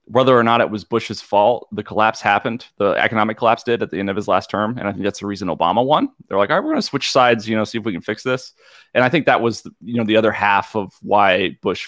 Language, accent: English, American